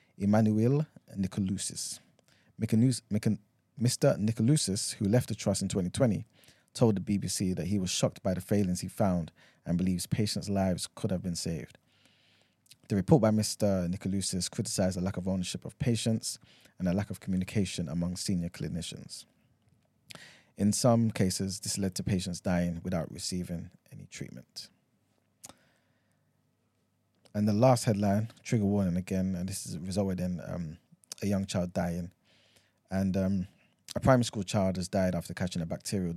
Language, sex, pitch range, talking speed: English, male, 90-110 Hz, 150 wpm